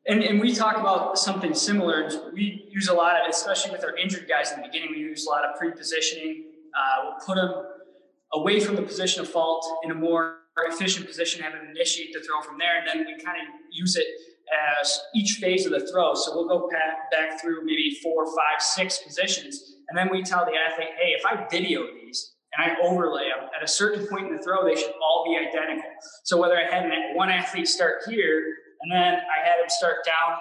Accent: American